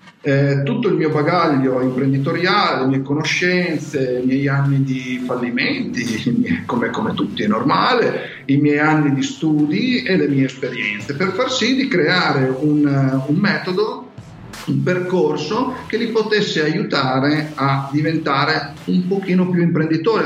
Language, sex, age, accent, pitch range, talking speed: Italian, male, 40-59, native, 140-180 Hz, 140 wpm